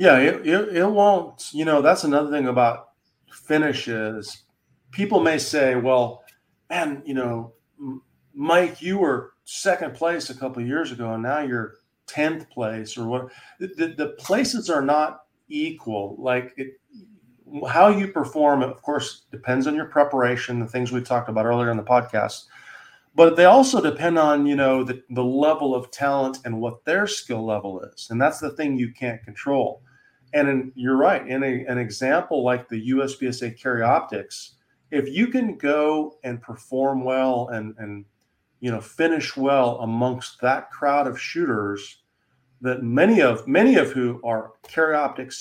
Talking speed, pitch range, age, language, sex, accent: 170 wpm, 120-150 Hz, 40-59, English, male, American